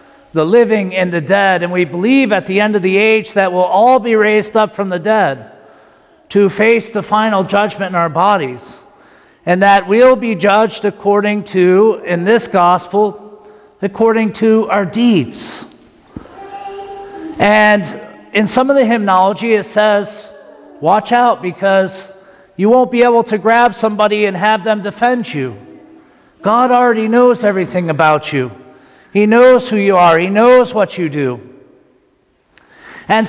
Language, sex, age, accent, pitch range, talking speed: English, male, 50-69, American, 185-235 Hz, 155 wpm